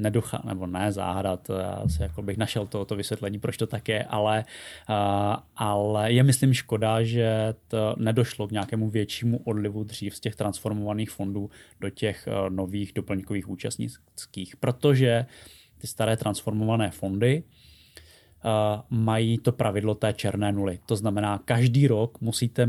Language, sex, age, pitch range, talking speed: Czech, male, 20-39, 100-120 Hz, 140 wpm